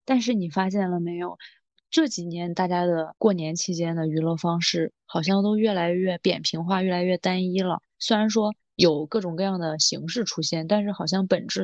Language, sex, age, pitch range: Chinese, female, 20-39, 165-195 Hz